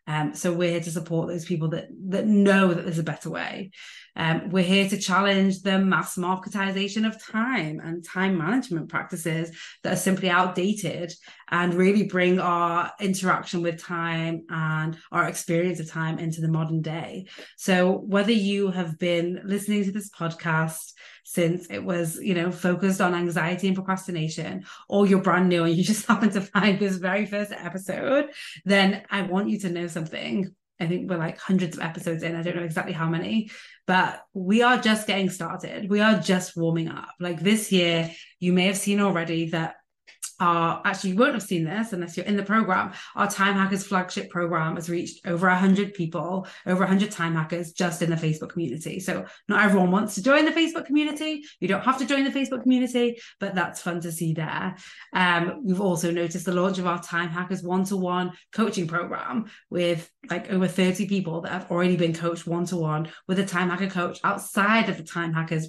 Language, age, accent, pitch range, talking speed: English, 20-39, British, 170-195 Hz, 195 wpm